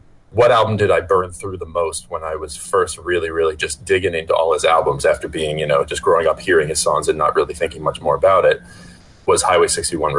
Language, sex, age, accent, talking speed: English, male, 30-49, American, 240 wpm